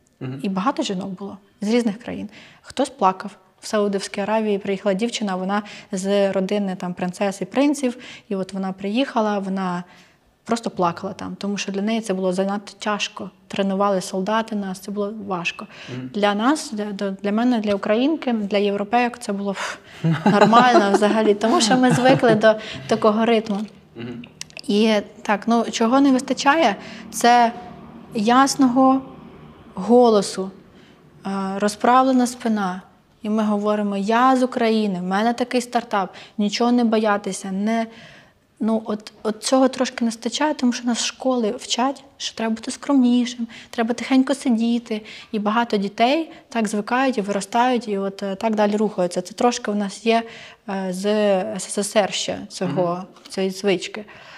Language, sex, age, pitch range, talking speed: Ukrainian, female, 20-39, 195-235 Hz, 145 wpm